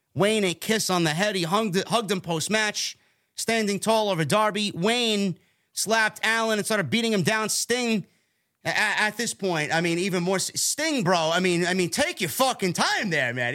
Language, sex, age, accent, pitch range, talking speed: English, male, 30-49, American, 160-210 Hz, 195 wpm